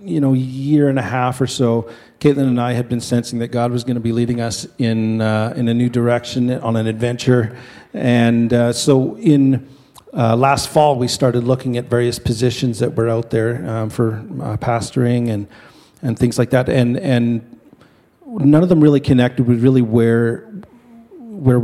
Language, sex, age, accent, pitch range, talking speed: English, male, 40-59, American, 115-130 Hz, 195 wpm